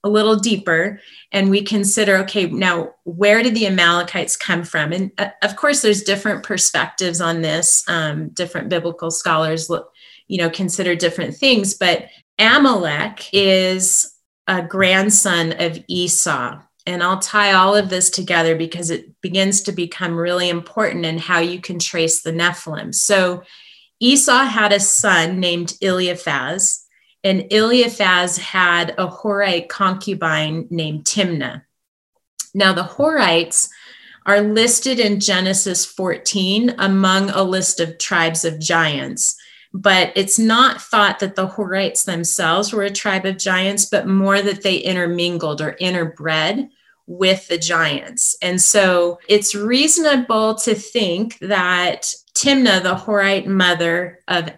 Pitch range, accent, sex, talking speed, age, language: 175-205 Hz, American, female, 140 wpm, 30-49, English